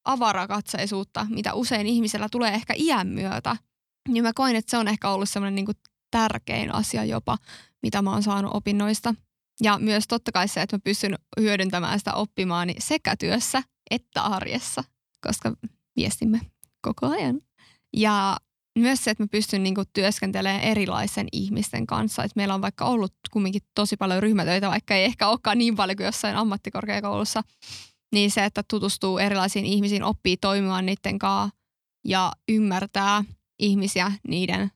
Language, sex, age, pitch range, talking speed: Finnish, female, 20-39, 195-215 Hz, 155 wpm